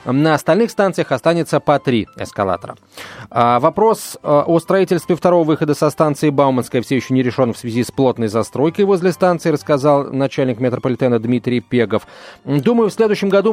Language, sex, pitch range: Russian, male, 125-170 Hz